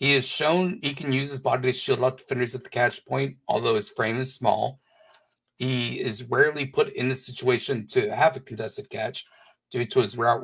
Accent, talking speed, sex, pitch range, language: American, 215 wpm, male, 120-140 Hz, English